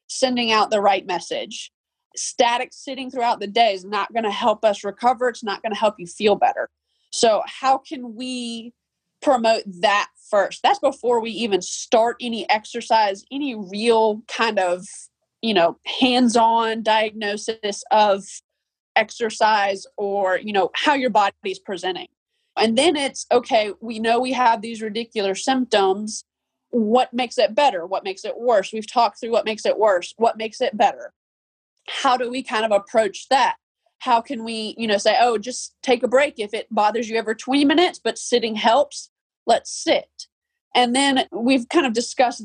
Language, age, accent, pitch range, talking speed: English, 20-39, American, 210-260 Hz, 175 wpm